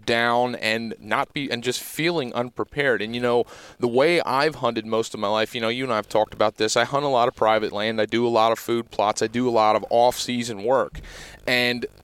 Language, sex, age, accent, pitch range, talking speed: English, male, 30-49, American, 110-125 Hz, 245 wpm